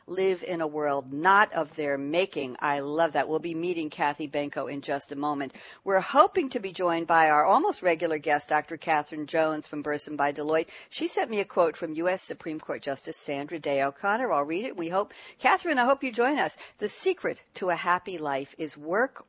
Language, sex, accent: English, female, American